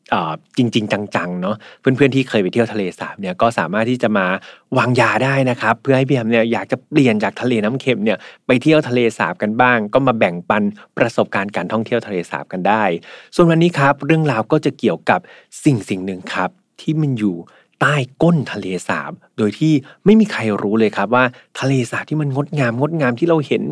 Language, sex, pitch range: Thai, male, 100-130 Hz